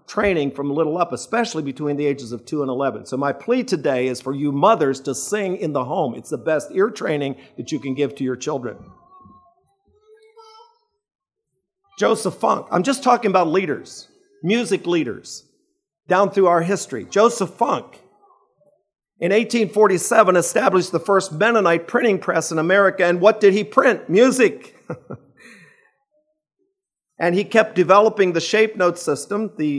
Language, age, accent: English, 50-69, American